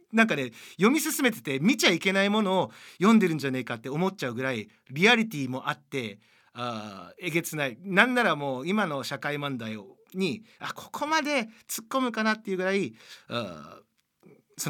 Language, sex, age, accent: Japanese, male, 40-59, native